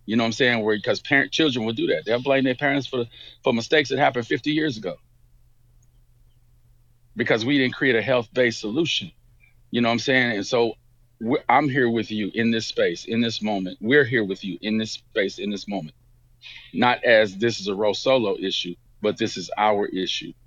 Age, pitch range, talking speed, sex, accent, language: 40-59, 115-125 Hz, 210 wpm, male, American, English